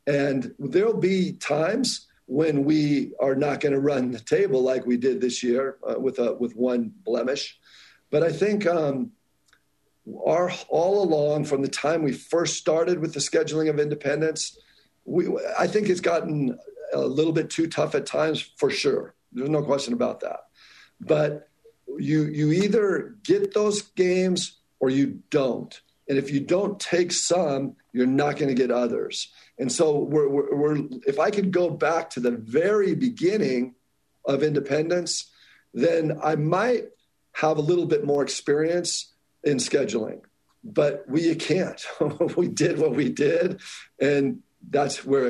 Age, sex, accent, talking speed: 50-69, male, American, 160 wpm